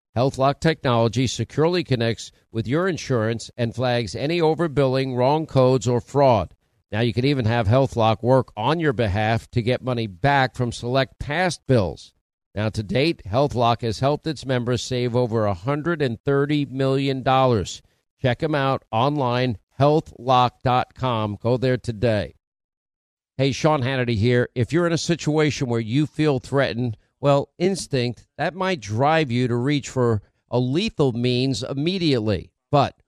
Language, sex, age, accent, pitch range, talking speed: English, male, 50-69, American, 120-145 Hz, 145 wpm